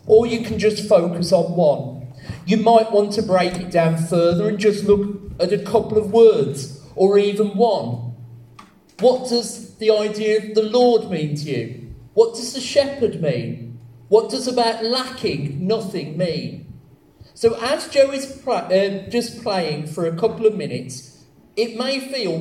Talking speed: 170 wpm